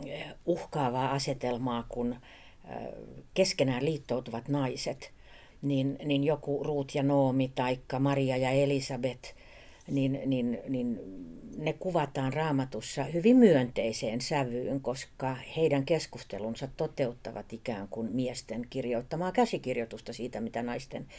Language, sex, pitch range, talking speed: Finnish, female, 130-175 Hz, 105 wpm